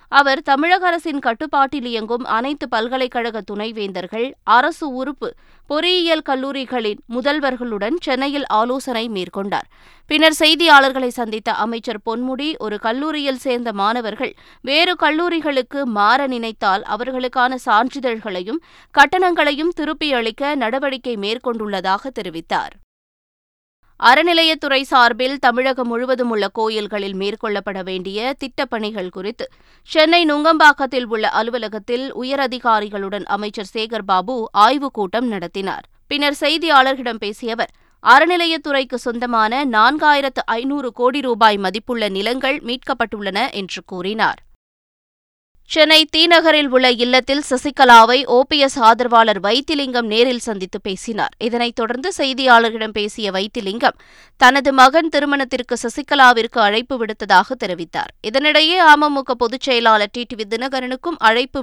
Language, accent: Tamil, native